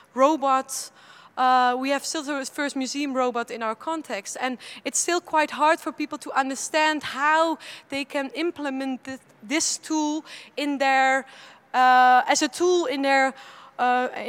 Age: 20-39